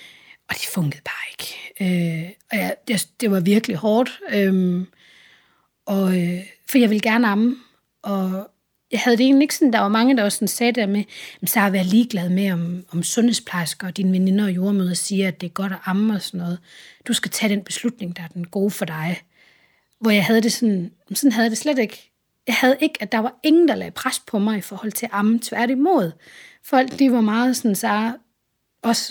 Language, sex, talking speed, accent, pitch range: Danish, female, 220 wpm, native, 190-235 Hz